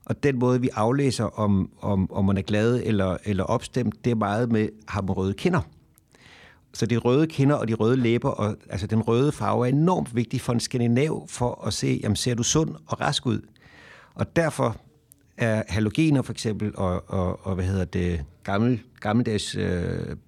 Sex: male